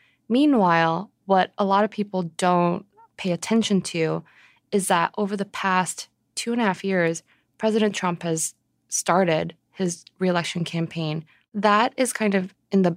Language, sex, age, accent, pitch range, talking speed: English, female, 20-39, American, 165-195 Hz, 155 wpm